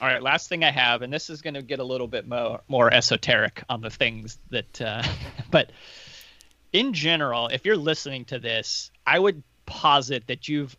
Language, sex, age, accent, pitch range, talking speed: English, male, 30-49, American, 110-145 Hz, 200 wpm